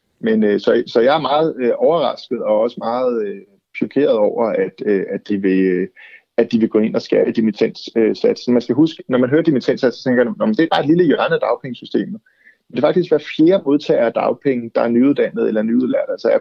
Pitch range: 115-165 Hz